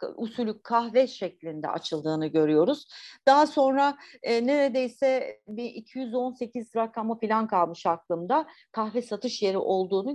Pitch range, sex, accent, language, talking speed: 220-295 Hz, female, native, Turkish, 110 wpm